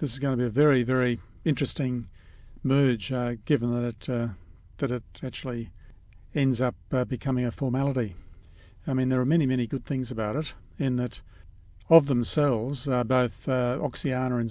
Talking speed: 180 wpm